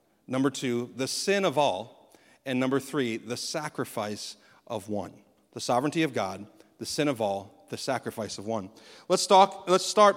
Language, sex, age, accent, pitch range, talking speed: English, male, 40-59, American, 135-185 Hz, 170 wpm